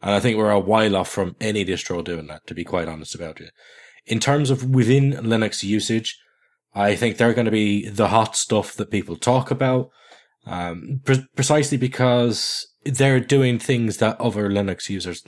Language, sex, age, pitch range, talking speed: English, male, 20-39, 100-130 Hz, 190 wpm